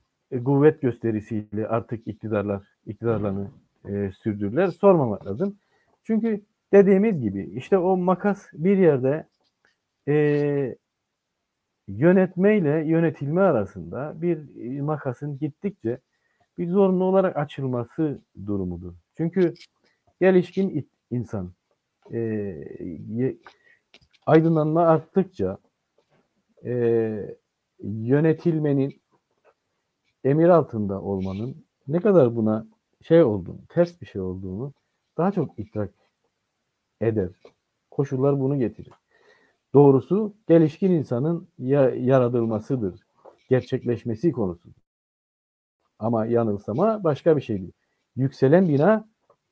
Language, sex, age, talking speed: Turkish, male, 50-69, 85 wpm